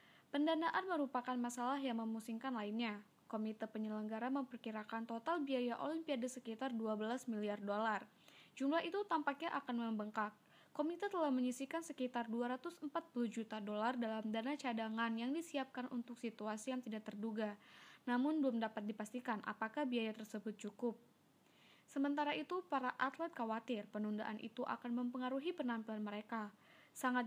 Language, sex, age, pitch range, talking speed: Indonesian, female, 20-39, 220-275 Hz, 130 wpm